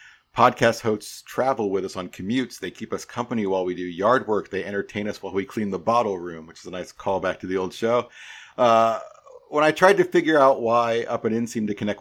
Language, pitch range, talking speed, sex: English, 100-120 Hz, 240 wpm, male